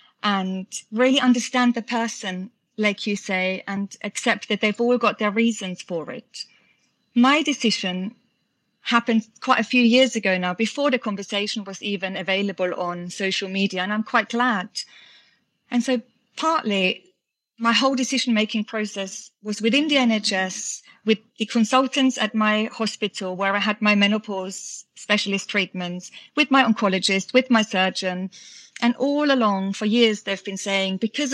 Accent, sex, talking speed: British, female, 150 wpm